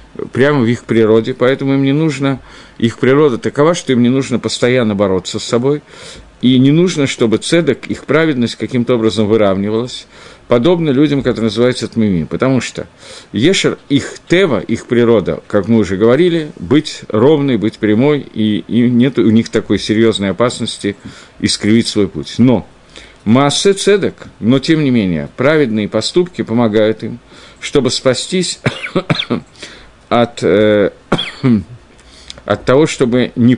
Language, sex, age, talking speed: Russian, male, 50-69, 140 wpm